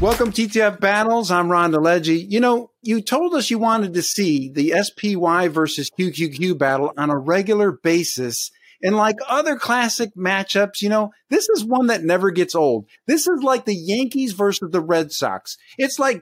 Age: 50-69